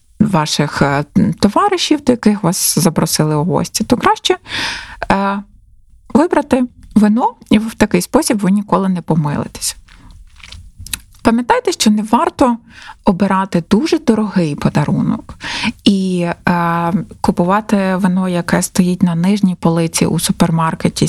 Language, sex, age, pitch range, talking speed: Ukrainian, female, 20-39, 165-215 Hz, 110 wpm